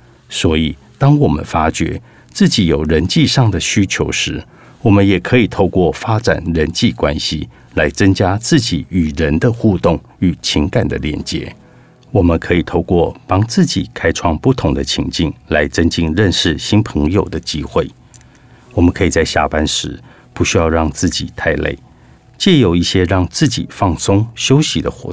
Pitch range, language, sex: 85-120 Hz, Chinese, male